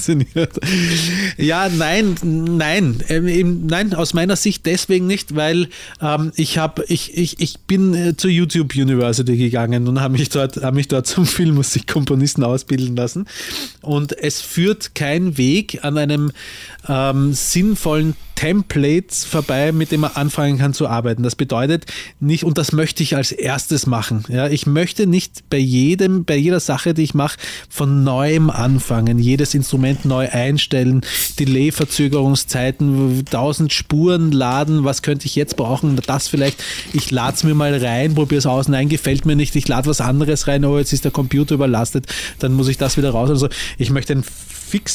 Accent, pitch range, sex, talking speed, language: Austrian, 135-165 Hz, male, 165 wpm, German